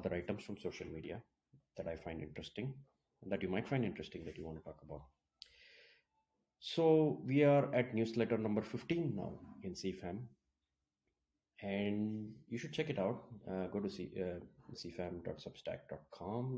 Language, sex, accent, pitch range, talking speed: English, male, Indian, 90-120 Hz, 140 wpm